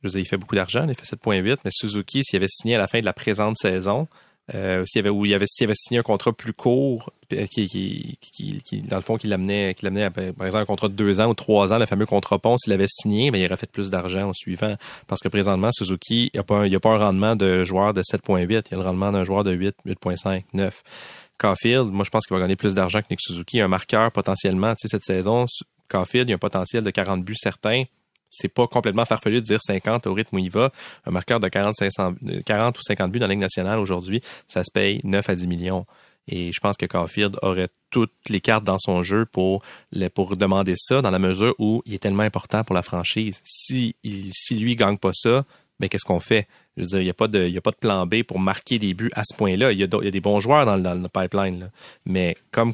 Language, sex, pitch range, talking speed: French, male, 95-110 Hz, 260 wpm